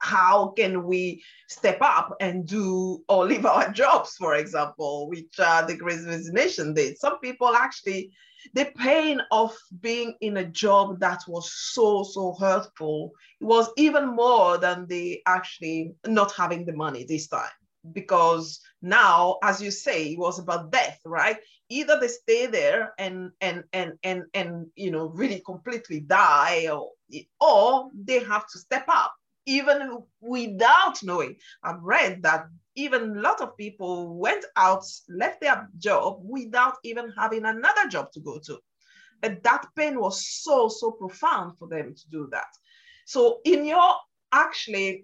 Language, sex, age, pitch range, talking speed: English, female, 30-49, 180-260 Hz, 155 wpm